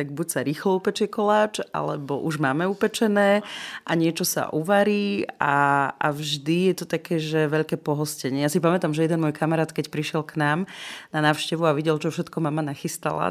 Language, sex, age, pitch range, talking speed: Slovak, female, 30-49, 150-175 Hz, 185 wpm